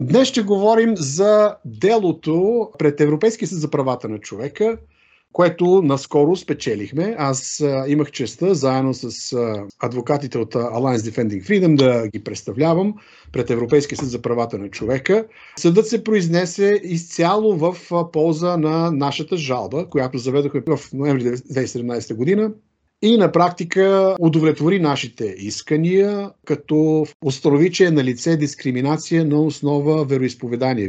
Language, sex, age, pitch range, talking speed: Bulgarian, male, 50-69, 130-175 Hz, 125 wpm